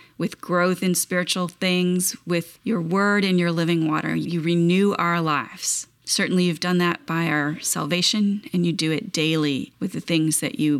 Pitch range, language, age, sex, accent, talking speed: 165-195 Hz, English, 30-49, female, American, 185 wpm